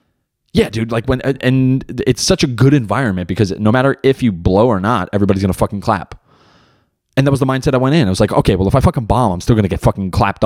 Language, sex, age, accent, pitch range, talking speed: English, male, 20-39, American, 100-135 Hz, 270 wpm